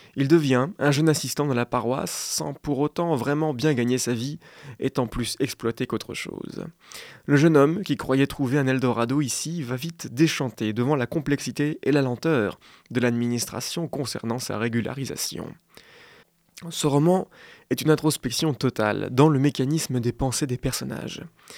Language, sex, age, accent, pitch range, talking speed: French, male, 20-39, French, 125-155 Hz, 160 wpm